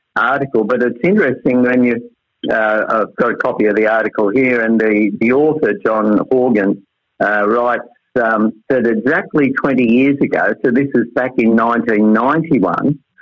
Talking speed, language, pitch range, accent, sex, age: 160 wpm, English, 105-125 Hz, Australian, male, 50-69